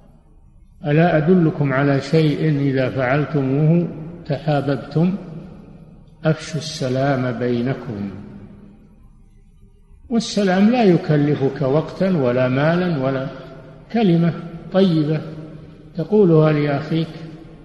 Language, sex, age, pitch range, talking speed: Arabic, male, 50-69, 130-160 Hz, 75 wpm